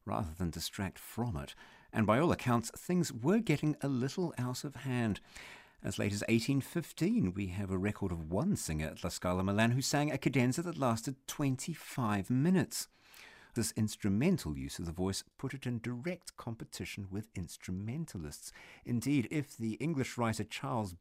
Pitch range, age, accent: 95-135 Hz, 50-69, British